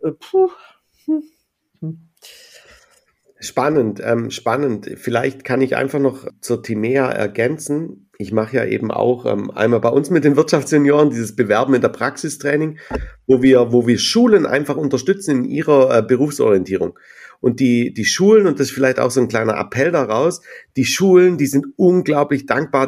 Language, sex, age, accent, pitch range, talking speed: German, male, 50-69, German, 120-145 Hz, 145 wpm